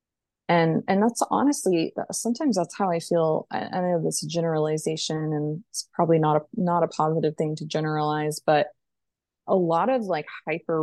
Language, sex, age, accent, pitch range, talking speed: English, female, 20-39, American, 160-195 Hz, 170 wpm